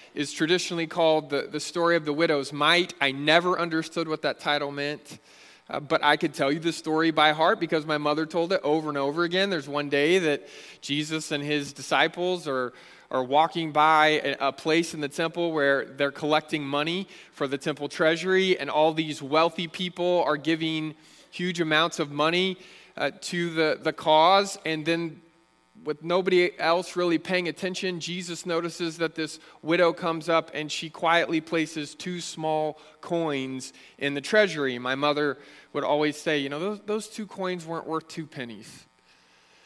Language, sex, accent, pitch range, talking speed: English, male, American, 150-175 Hz, 180 wpm